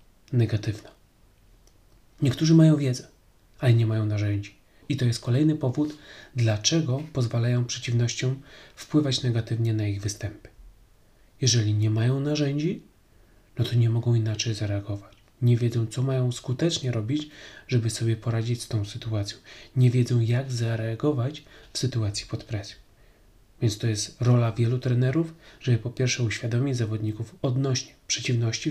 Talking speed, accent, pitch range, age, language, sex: 135 wpm, native, 110-130 Hz, 30-49, Polish, male